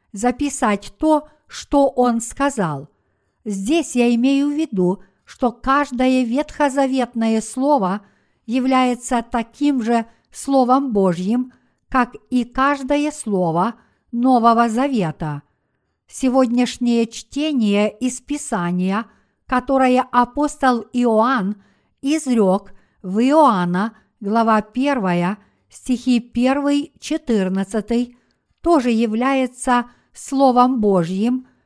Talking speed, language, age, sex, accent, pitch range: 80 wpm, Russian, 50-69, female, native, 205-265 Hz